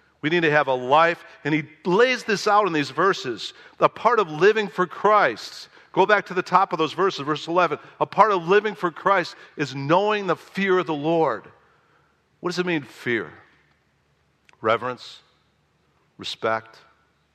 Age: 50-69